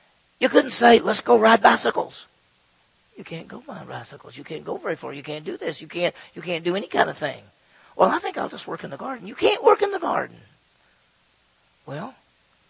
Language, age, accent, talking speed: English, 50-69, American, 215 wpm